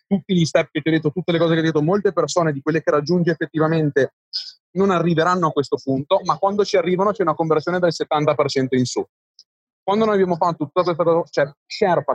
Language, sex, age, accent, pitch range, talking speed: Italian, male, 30-49, native, 150-180 Hz, 225 wpm